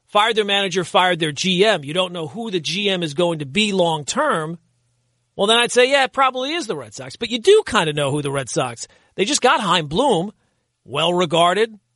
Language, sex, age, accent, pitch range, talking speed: English, male, 40-59, American, 140-220 Hz, 220 wpm